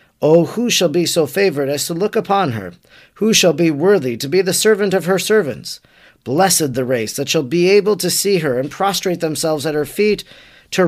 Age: 40-59